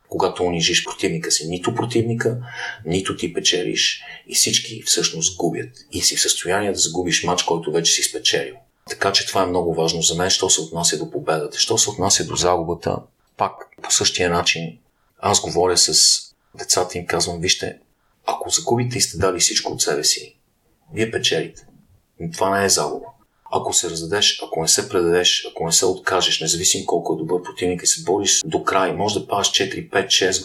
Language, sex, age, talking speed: Bulgarian, male, 40-59, 185 wpm